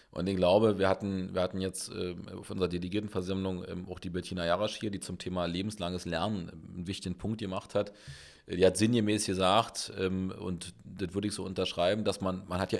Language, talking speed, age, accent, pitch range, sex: German, 190 wpm, 30-49, German, 95-115 Hz, male